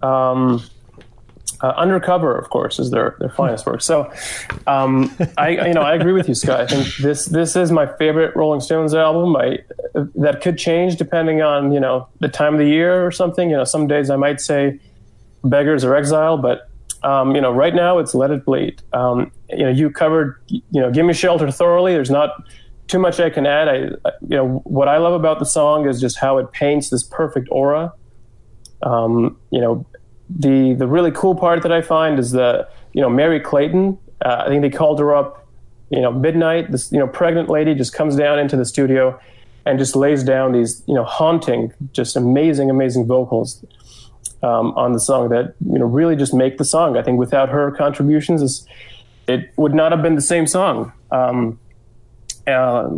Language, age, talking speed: English, 30-49, 200 wpm